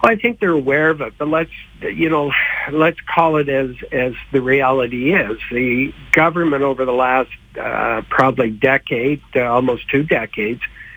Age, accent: 60-79, American